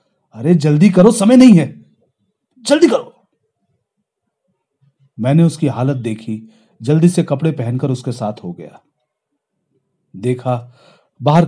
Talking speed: 115 wpm